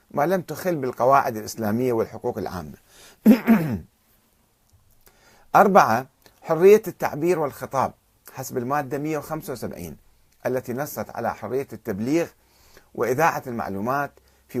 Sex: male